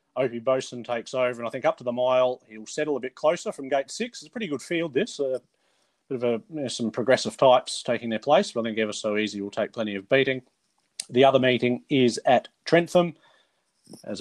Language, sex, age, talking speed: English, male, 30-49, 230 wpm